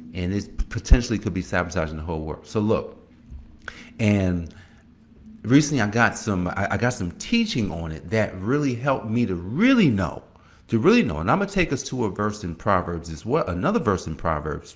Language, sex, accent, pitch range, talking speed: English, male, American, 90-115 Hz, 200 wpm